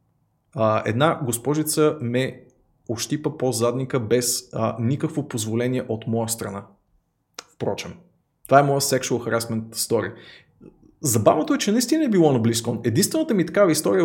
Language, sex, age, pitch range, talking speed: Bulgarian, male, 20-39, 115-155 Hz, 145 wpm